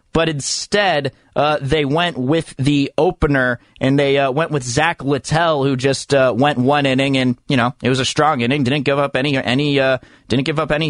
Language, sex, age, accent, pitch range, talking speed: English, male, 30-49, American, 130-155 Hz, 215 wpm